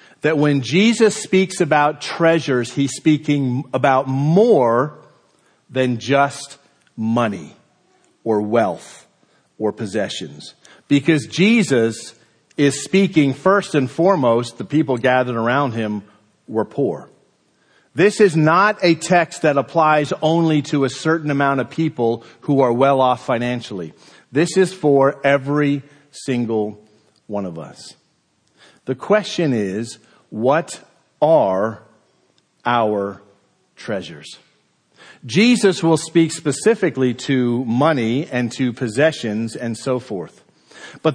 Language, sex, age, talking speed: English, male, 50-69, 115 wpm